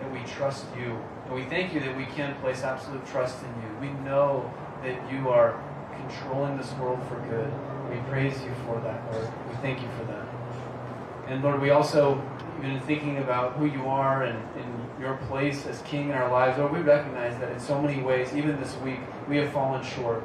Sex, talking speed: male, 210 wpm